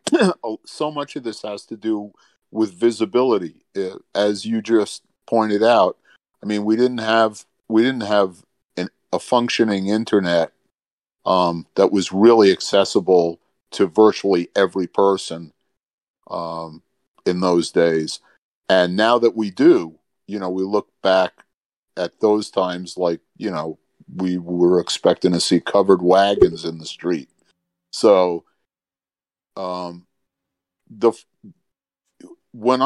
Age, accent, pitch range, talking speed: 50-69, American, 90-110 Hz, 125 wpm